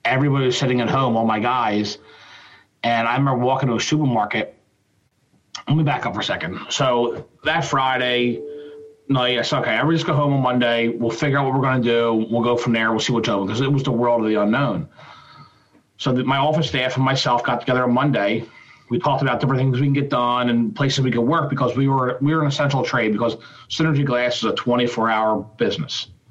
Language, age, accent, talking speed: English, 40-59, American, 225 wpm